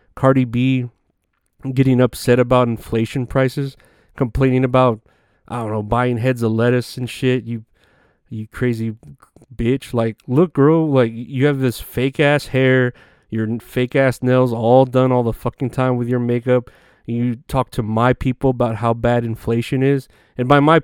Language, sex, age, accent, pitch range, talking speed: English, male, 20-39, American, 115-130 Hz, 165 wpm